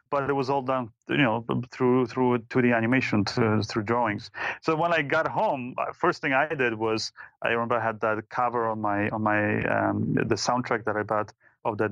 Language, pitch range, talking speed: English, 115-135 Hz, 215 wpm